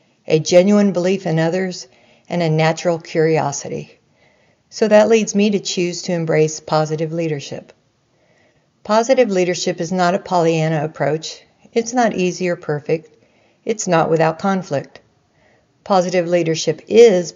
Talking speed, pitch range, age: 130 wpm, 160-200 Hz, 60-79